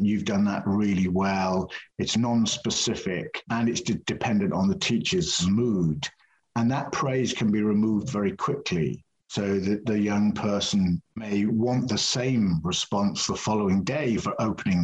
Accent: British